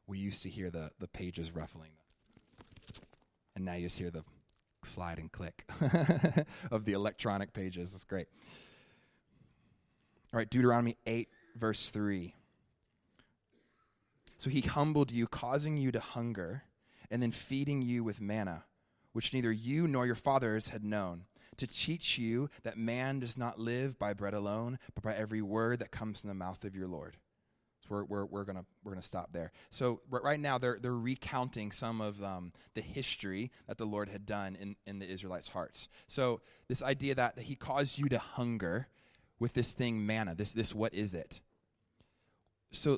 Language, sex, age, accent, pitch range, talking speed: English, male, 20-39, American, 100-125 Hz, 170 wpm